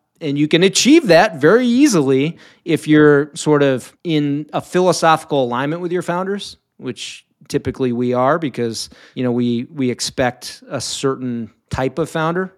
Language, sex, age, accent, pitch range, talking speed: English, male, 30-49, American, 125-170 Hz, 155 wpm